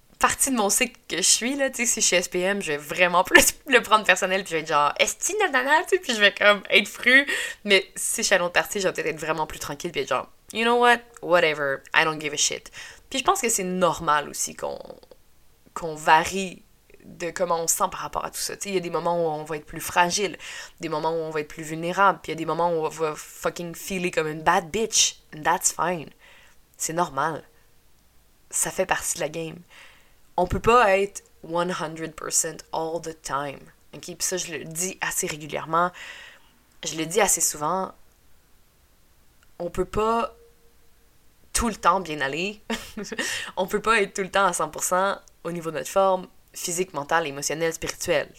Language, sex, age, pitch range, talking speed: French, female, 20-39, 155-200 Hz, 220 wpm